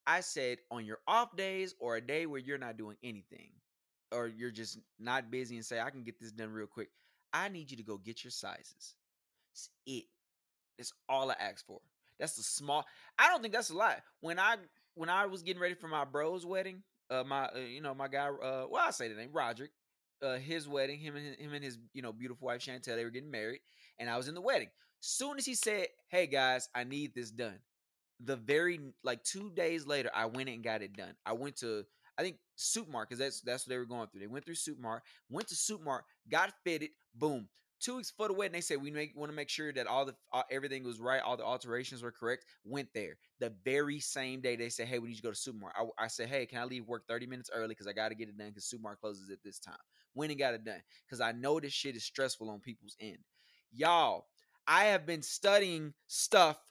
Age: 20-39